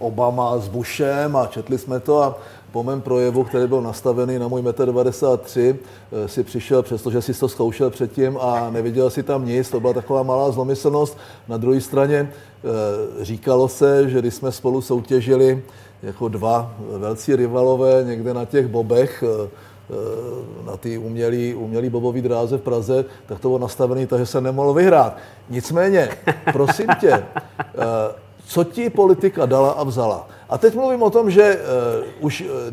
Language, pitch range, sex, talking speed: Czech, 120-150 Hz, male, 160 wpm